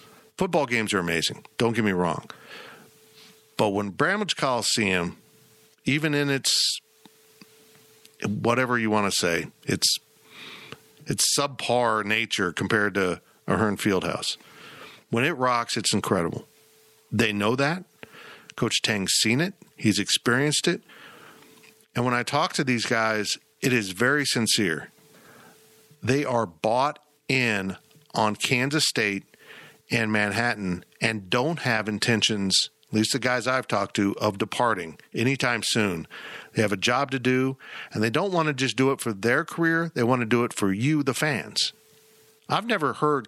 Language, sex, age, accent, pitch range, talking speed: English, male, 50-69, American, 105-145 Hz, 150 wpm